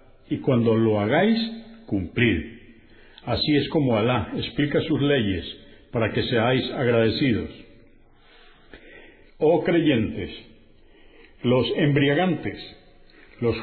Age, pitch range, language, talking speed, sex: 50-69, 110-155 Hz, Spanish, 95 wpm, male